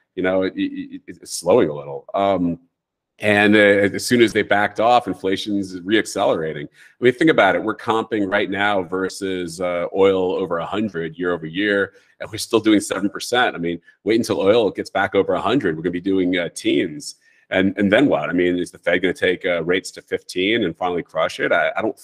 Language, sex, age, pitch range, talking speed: English, male, 30-49, 95-115 Hz, 225 wpm